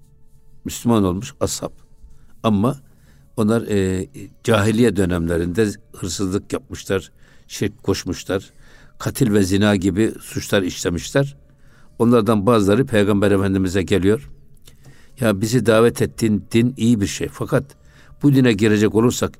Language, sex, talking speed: Turkish, male, 110 wpm